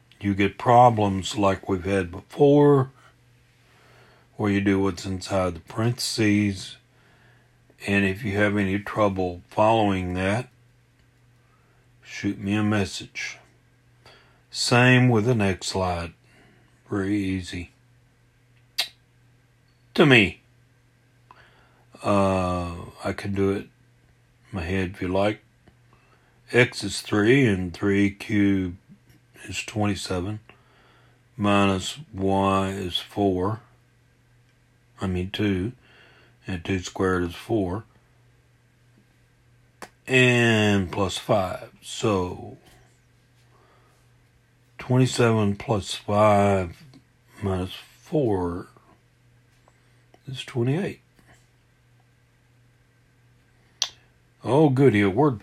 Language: English